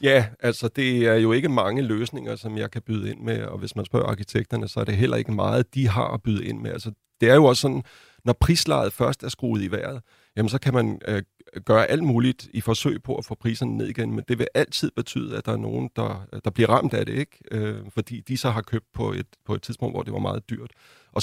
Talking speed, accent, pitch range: 265 wpm, native, 105-125 Hz